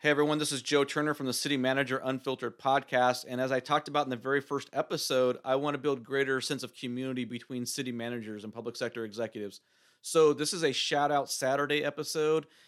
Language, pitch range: English, 125-145 Hz